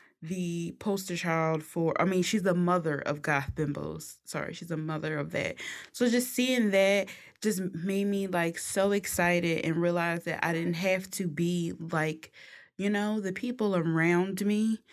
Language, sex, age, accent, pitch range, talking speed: English, female, 20-39, American, 160-185 Hz, 175 wpm